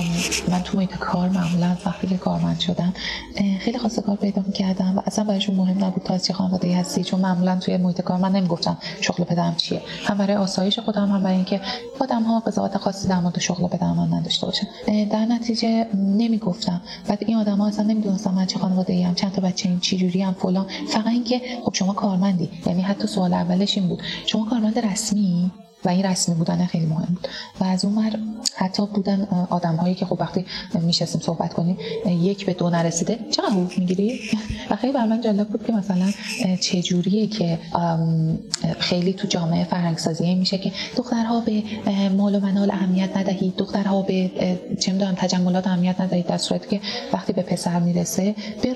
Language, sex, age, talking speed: Persian, female, 30-49, 185 wpm